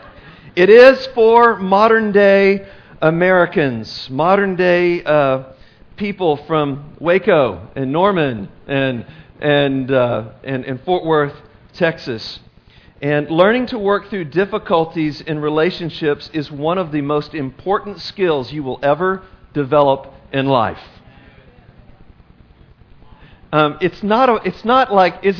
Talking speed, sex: 115 wpm, male